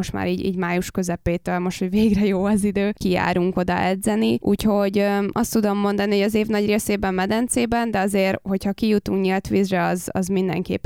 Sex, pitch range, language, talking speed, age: female, 185-210 Hz, Hungarian, 195 wpm, 20-39